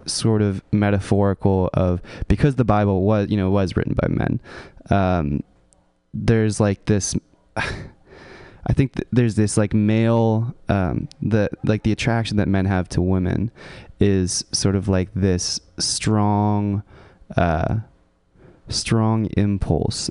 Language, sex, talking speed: English, male, 130 wpm